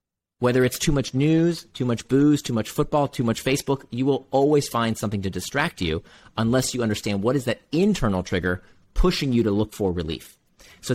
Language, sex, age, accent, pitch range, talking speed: English, male, 30-49, American, 105-150 Hz, 205 wpm